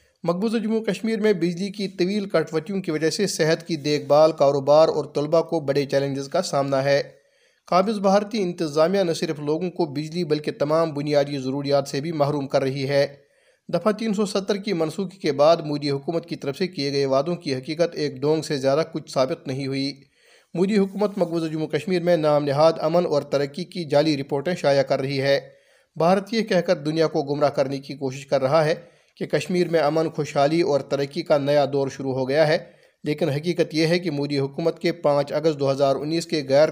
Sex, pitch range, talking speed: male, 140-170 Hz, 210 wpm